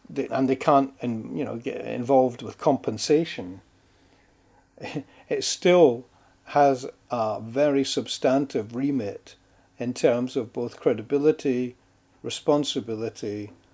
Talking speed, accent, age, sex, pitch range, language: 95 wpm, British, 40-59, male, 110-140 Hz, English